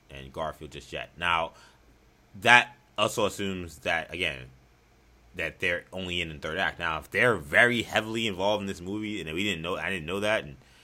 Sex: male